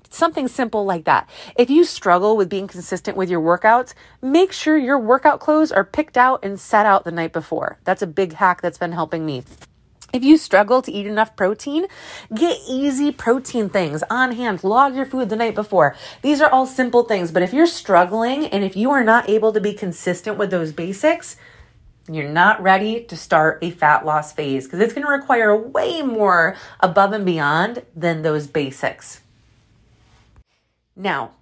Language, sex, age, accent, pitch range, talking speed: English, female, 30-49, American, 175-265 Hz, 185 wpm